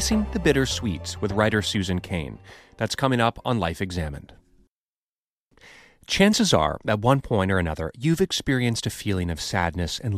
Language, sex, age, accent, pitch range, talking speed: English, male, 30-49, American, 95-140 Hz, 160 wpm